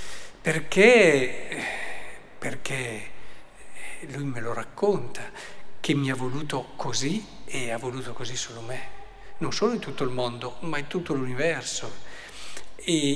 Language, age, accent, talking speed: Italian, 50-69, native, 130 wpm